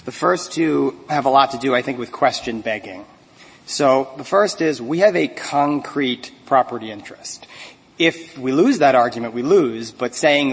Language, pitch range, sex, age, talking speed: English, 125-155 Hz, male, 40-59, 180 wpm